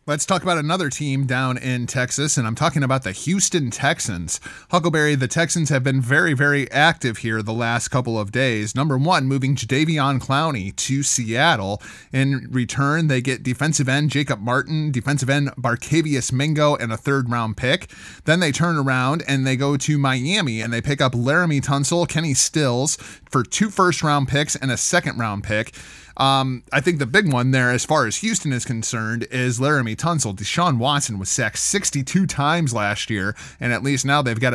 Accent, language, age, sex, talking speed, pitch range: American, English, 20-39, male, 185 wpm, 125-145 Hz